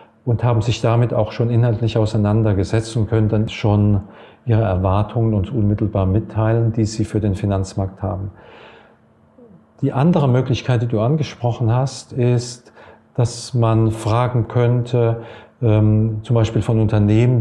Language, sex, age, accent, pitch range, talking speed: German, male, 40-59, German, 105-120 Hz, 135 wpm